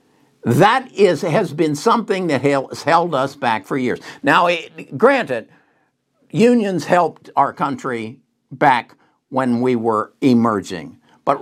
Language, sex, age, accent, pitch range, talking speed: English, male, 60-79, American, 130-205 Hz, 130 wpm